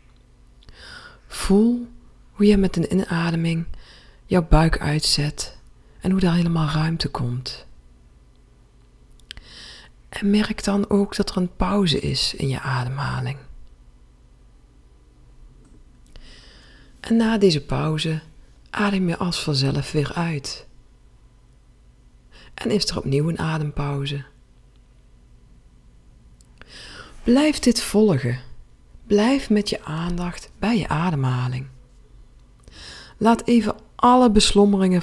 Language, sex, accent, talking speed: Dutch, female, Dutch, 100 wpm